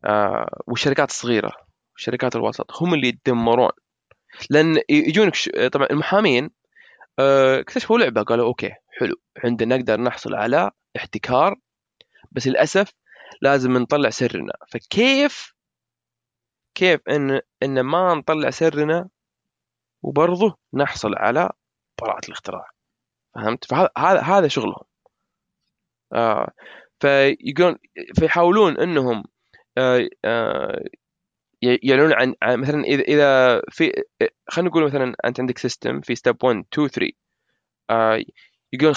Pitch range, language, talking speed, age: 125-175 Hz, Arabic, 90 wpm, 20-39